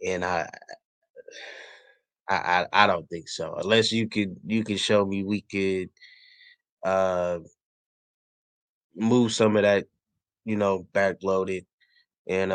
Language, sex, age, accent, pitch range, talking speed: English, male, 20-39, American, 90-105 Hz, 130 wpm